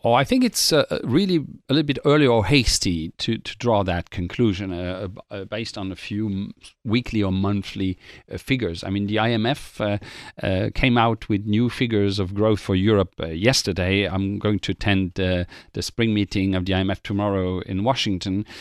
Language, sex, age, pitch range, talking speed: English, male, 40-59, 100-125 Hz, 195 wpm